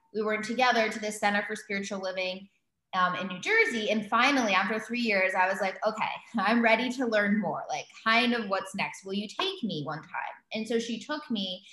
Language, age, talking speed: English, 20-39, 220 wpm